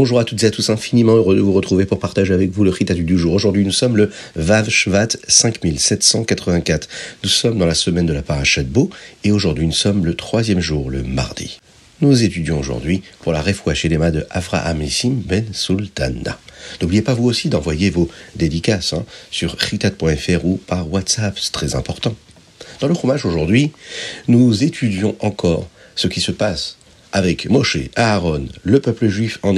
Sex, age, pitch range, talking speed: male, 50-69, 85-110 Hz, 180 wpm